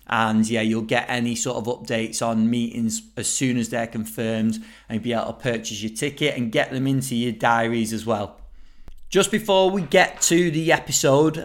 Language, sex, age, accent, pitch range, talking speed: English, male, 30-49, British, 125-150 Hz, 200 wpm